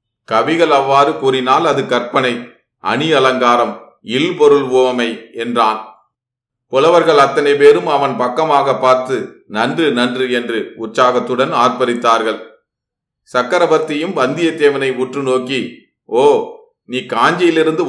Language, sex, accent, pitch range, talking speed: Tamil, male, native, 125-145 Hz, 90 wpm